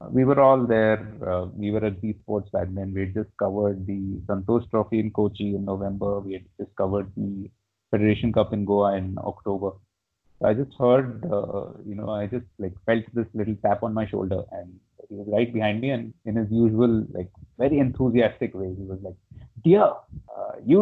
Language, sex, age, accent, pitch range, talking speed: English, male, 30-49, Indian, 100-115 Hz, 200 wpm